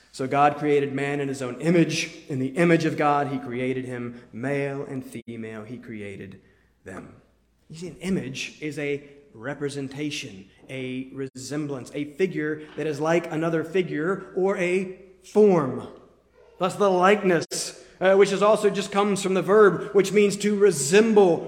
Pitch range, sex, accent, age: 135-195 Hz, male, American, 30-49